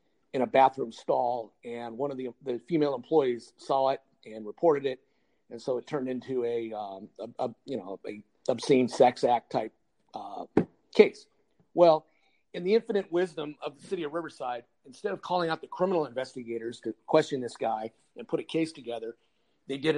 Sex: male